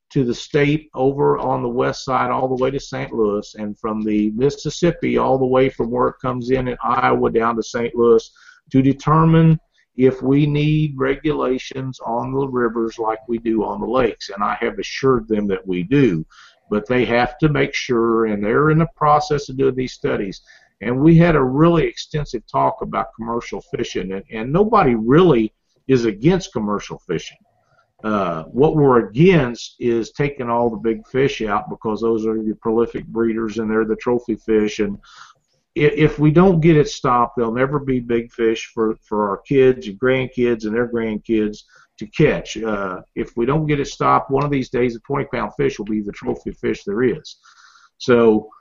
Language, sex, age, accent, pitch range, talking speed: English, male, 50-69, American, 110-140 Hz, 195 wpm